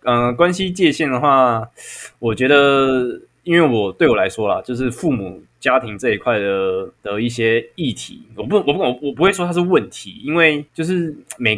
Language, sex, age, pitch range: Chinese, male, 20-39, 100-125 Hz